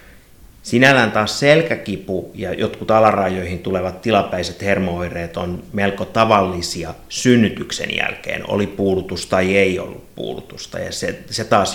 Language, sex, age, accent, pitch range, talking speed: Finnish, male, 30-49, native, 90-110 Hz, 115 wpm